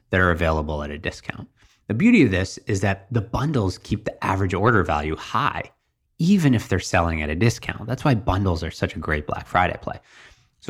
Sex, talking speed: male, 215 wpm